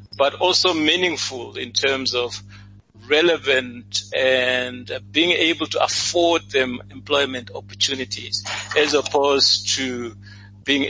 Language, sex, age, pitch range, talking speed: English, male, 60-79, 100-140 Hz, 105 wpm